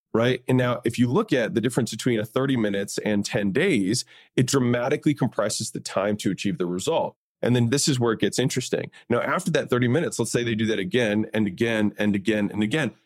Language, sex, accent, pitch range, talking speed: English, male, American, 110-135 Hz, 230 wpm